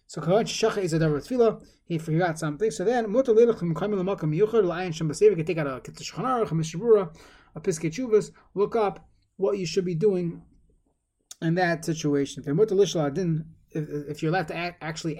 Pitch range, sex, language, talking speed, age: 155-205 Hz, male, English, 90 wpm, 20-39